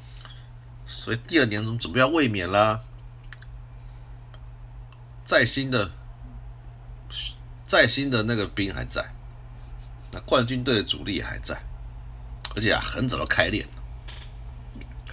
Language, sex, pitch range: Chinese, male, 80-120 Hz